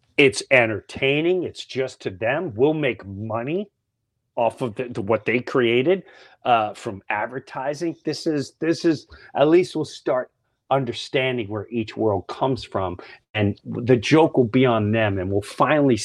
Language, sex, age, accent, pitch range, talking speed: English, male, 40-59, American, 110-155 Hz, 155 wpm